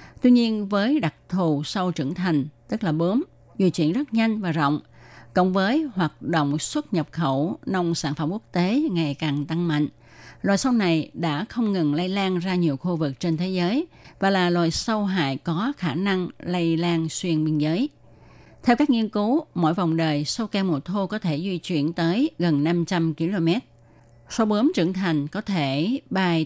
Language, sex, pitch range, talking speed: Vietnamese, female, 150-195 Hz, 195 wpm